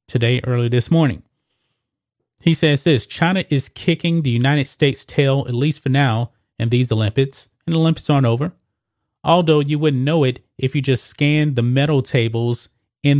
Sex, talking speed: male, 175 wpm